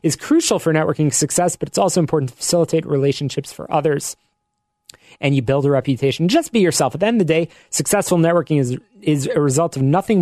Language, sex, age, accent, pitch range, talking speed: English, male, 30-49, American, 130-165 Hz, 210 wpm